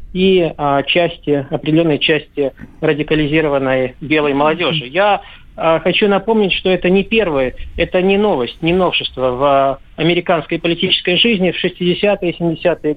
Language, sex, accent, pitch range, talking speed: Russian, male, native, 145-175 Hz, 135 wpm